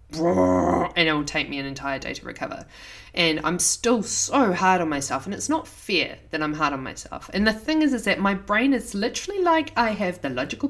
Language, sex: English, female